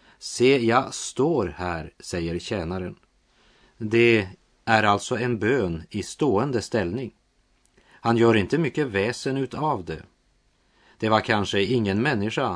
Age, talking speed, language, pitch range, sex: 30-49, 130 wpm, Swedish, 95-125 Hz, male